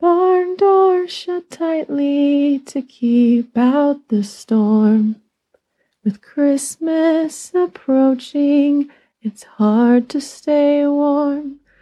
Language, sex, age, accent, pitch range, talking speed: English, female, 30-49, American, 245-320 Hz, 85 wpm